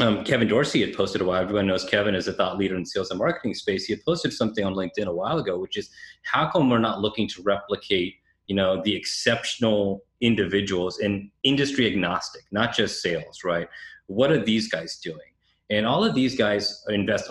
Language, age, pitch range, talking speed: English, 30-49, 95-110 Hz, 210 wpm